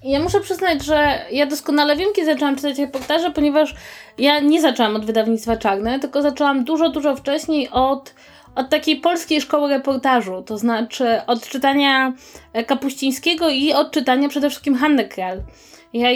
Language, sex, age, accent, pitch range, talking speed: Polish, female, 20-39, native, 250-290 Hz, 155 wpm